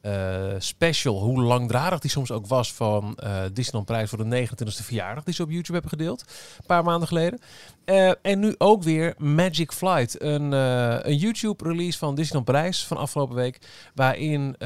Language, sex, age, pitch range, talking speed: Dutch, male, 40-59, 120-150 Hz, 180 wpm